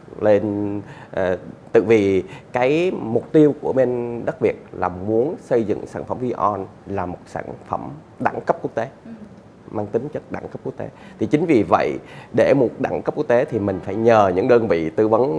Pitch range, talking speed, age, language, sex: 95-125 Hz, 200 wpm, 20-39, Vietnamese, male